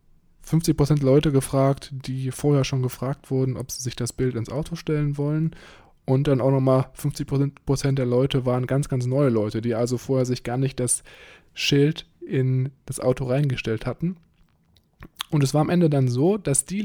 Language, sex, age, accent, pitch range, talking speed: German, male, 20-39, German, 125-145 Hz, 180 wpm